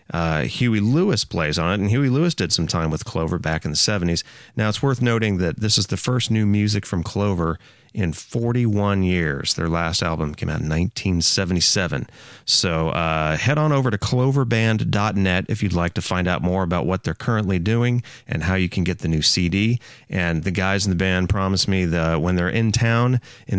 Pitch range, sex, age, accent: 90-120 Hz, male, 30-49, American